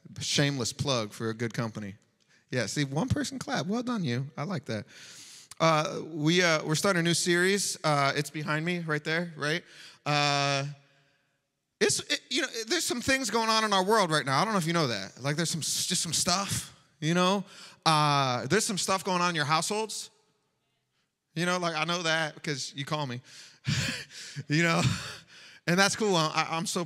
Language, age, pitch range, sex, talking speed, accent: English, 30-49, 140-180 Hz, male, 200 wpm, American